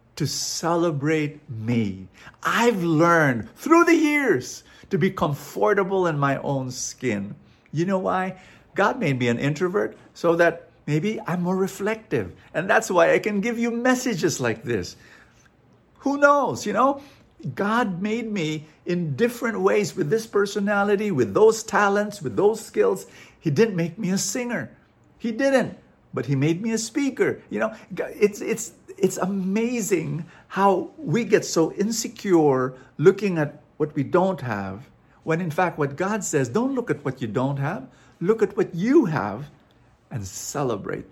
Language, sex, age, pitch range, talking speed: English, male, 50-69, 140-220 Hz, 160 wpm